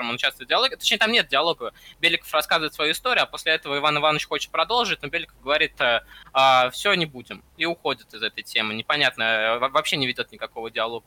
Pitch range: 130-170 Hz